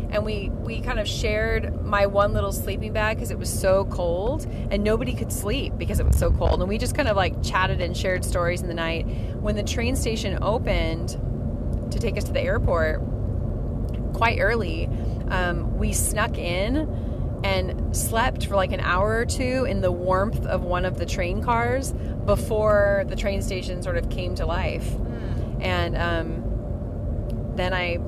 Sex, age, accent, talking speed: female, 30-49, American, 180 wpm